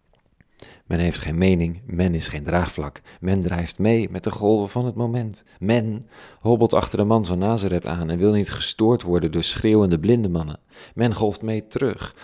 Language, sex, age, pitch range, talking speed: Dutch, male, 40-59, 85-105 Hz, 185 wpm